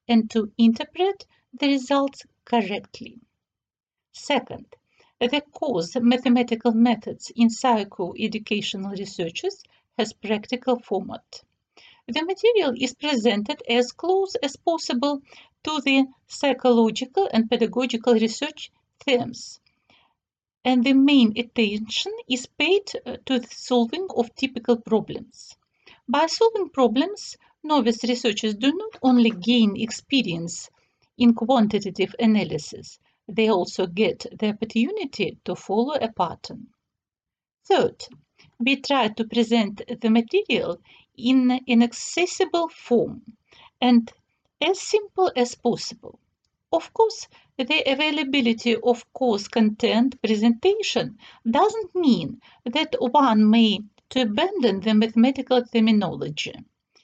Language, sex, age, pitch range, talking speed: Russian, female, 50-69, 225-285 Hz, 105 wpm